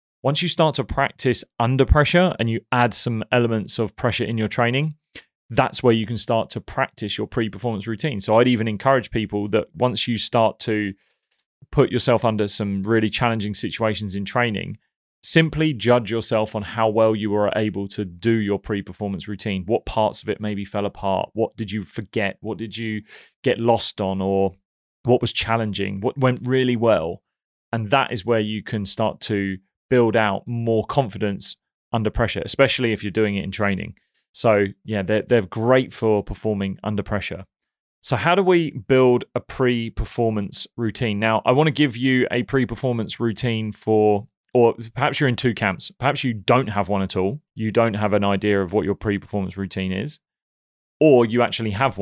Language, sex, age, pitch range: English, male, 20-39, 105-125 Hz